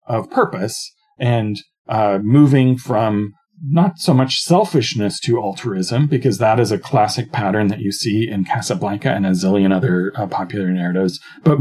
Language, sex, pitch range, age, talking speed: English, male, 105-140 Hz, 40-59, 160 wpm